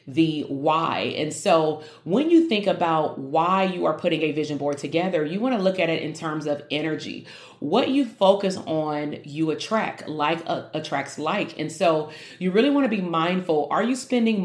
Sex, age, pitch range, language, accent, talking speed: female, 30-49, 155-195 Hz, English, American, 195 wpm